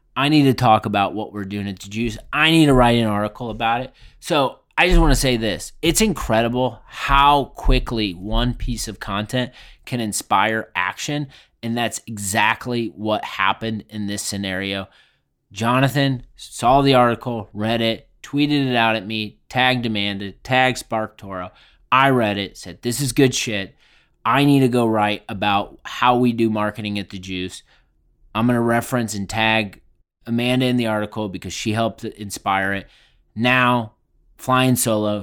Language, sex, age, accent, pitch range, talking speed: English, male, 30-49, American, 105-130 Hz, 170 wpm